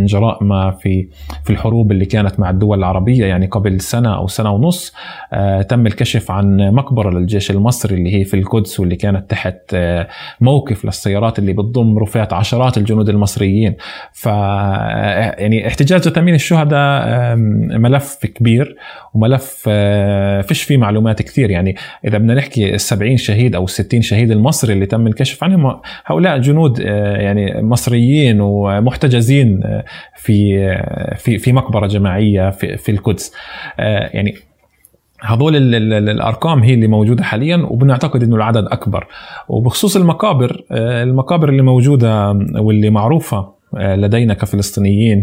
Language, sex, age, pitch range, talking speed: Arabic, male, 20-39, 100-120 Hz, 130 wpm